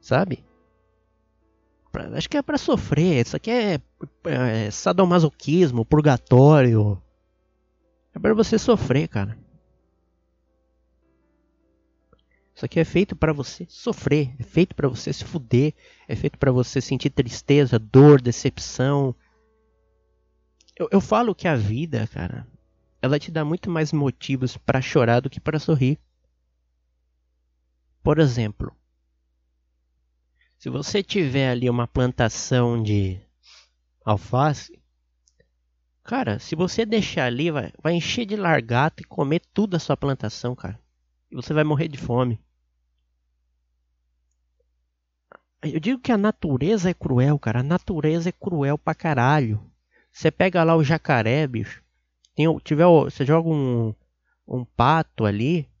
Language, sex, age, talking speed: English, male, 20-39, 125 wpm